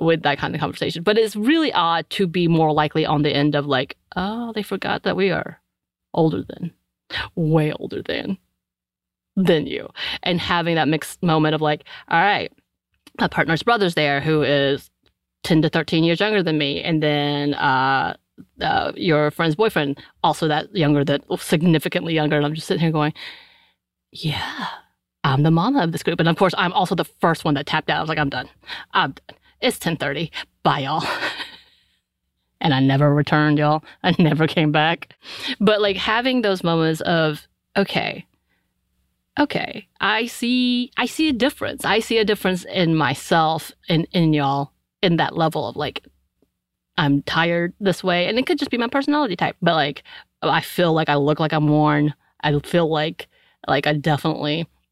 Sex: female